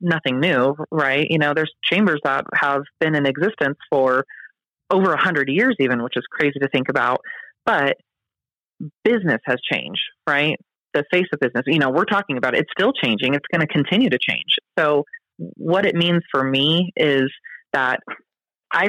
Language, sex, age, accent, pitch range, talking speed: English, female, 30-49, American, 135-160 Hz, 180 wpm